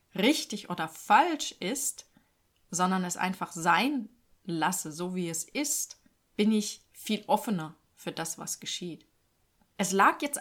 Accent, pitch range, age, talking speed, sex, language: German, 160-205 Hz, 30-49, 140 wpm, female, German